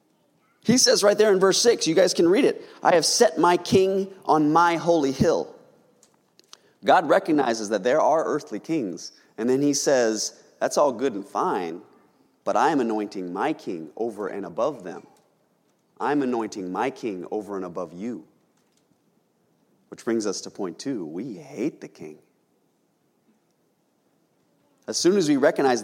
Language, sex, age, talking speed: English, male, 30-49, 165 wpm